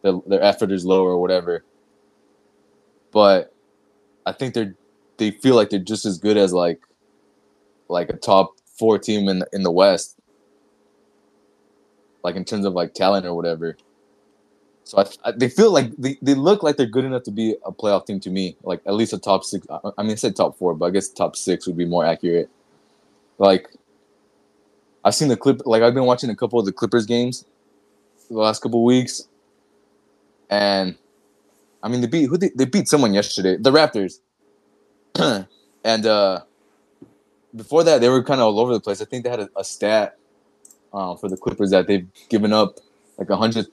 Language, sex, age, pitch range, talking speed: English, male, 20-39, 100-115 Hz, 195 wpm